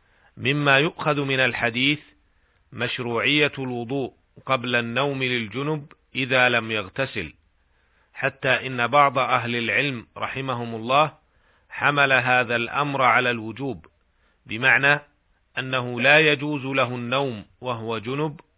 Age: 40-59